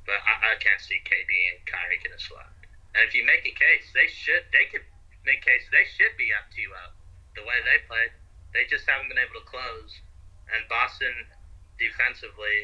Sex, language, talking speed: male, English, 205 wpm